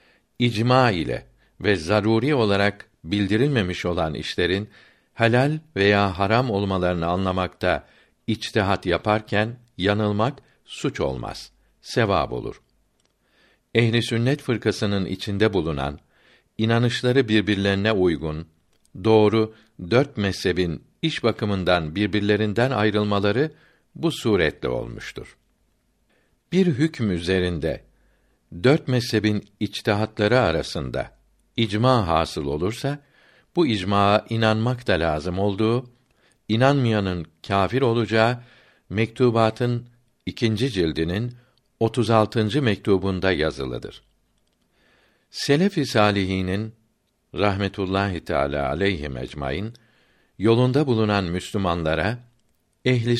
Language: Turkish